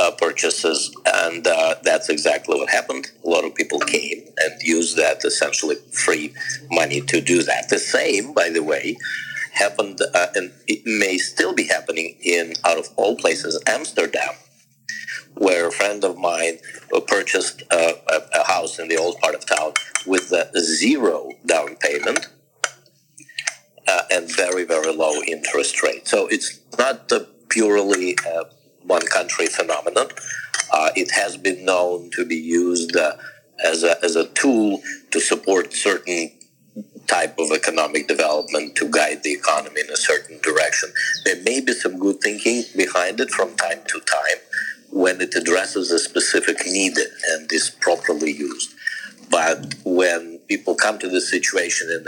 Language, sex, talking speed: English, male, 160 wpm